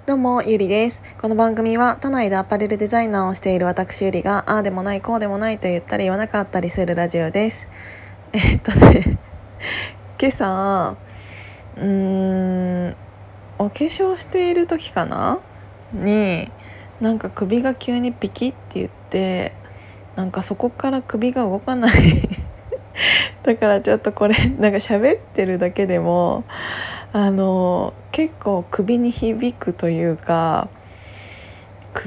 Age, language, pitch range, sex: 20-39, Japanese, 175-225 Hz, female